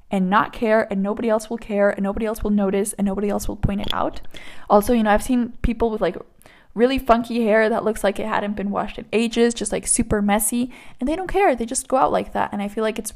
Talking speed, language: 270 wpm, English